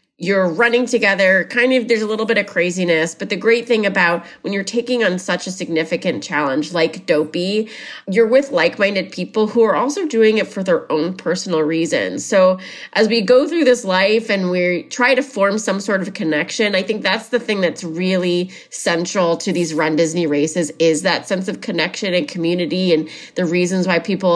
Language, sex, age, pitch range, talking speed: English, female, 30-49, 165-200 Hz, 200 wpm